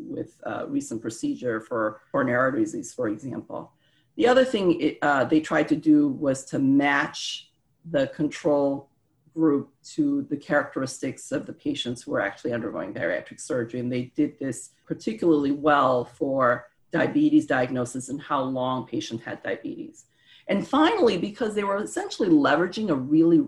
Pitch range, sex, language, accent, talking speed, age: 135-200 Hz, female, English, American, 155 wpm, 40-59